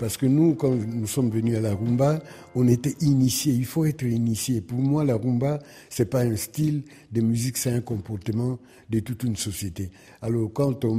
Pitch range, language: 115-135 Hz, French